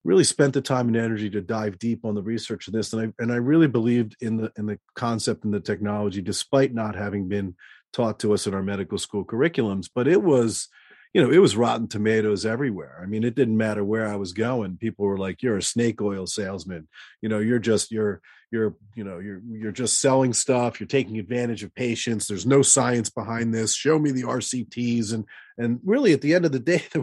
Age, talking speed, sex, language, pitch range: 40-59, 230 wpm, male, English, 105-125 Hz